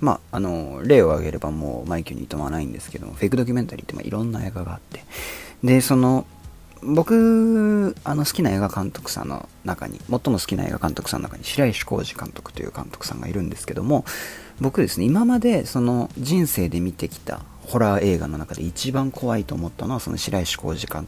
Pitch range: 85-135 Hz